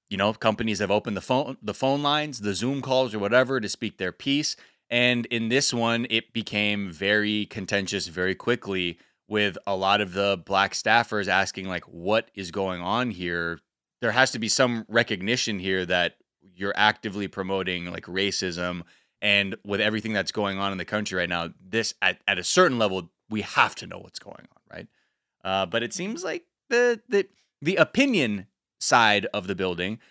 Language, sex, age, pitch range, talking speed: English, male, 20-39, 95-130 Hz, 185 wpm